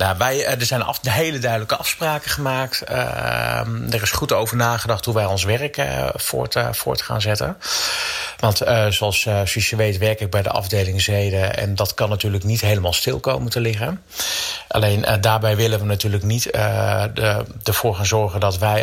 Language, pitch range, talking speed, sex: Dutch, 100-115 Hz, 185 wpm, male